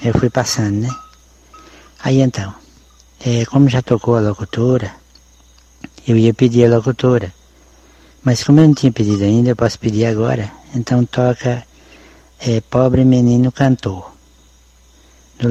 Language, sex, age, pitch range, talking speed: Portuguese, male, 60-79, 100-135 Hz, 130 wpm